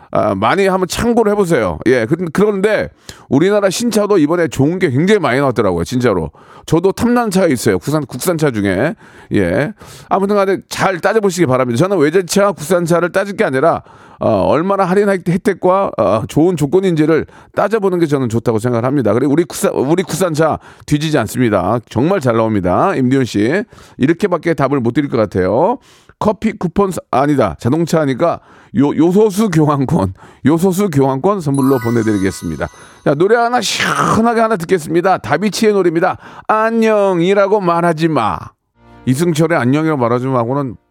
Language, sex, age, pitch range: Korean, male, 40-59, 115-190 Hz